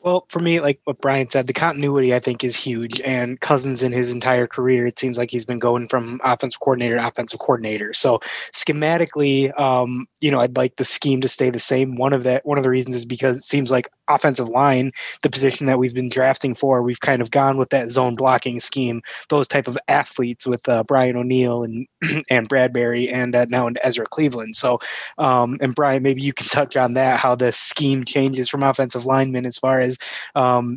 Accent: American